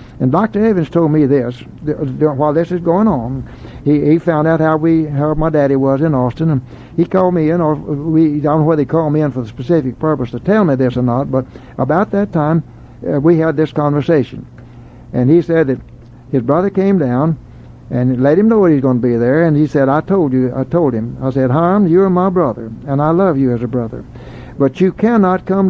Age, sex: 60-79, male